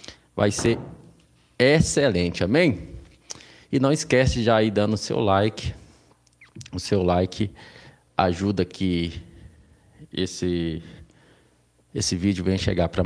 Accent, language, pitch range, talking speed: Brazilian, Portuguese, 90-115 Hz, 115 wpm